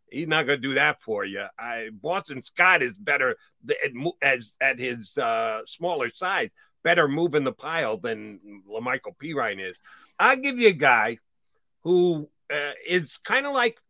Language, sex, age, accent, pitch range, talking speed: English, male, 50-69, American, 130-175 Hz, 170 wpm